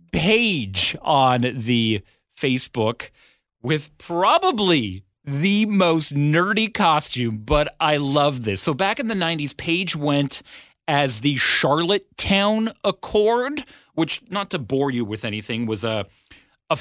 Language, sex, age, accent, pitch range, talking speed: English, male, 40-59, American, 130-175 Hz, 125 wpm